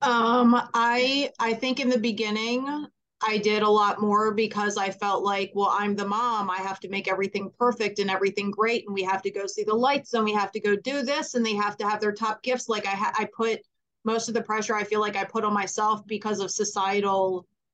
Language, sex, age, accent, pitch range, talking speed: English, female, 30-49, American, 200-225 Hz, 235 wpm